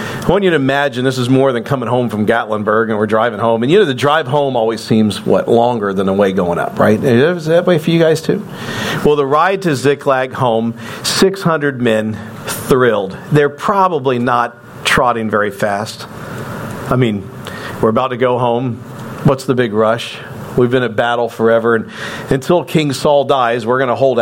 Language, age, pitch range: English, 50-69, 110-135 Hz